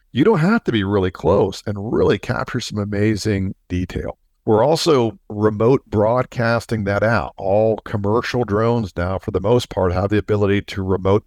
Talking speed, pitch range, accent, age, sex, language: 170 wpm, 100-120 Hz, American, 50-69, male, English